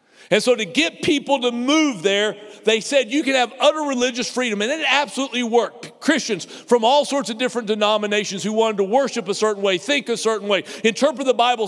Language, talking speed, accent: English, 210 wpm, American